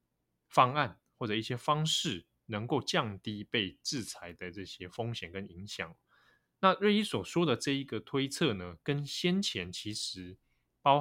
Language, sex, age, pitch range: Chinese, male, 20-39, 95-130 Hz